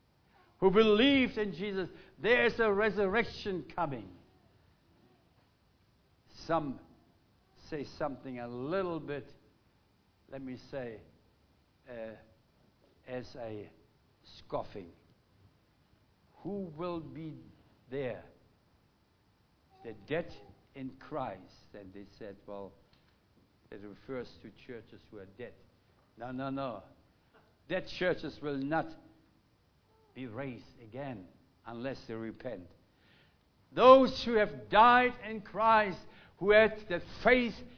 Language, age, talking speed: English, 60-79, 100 wpm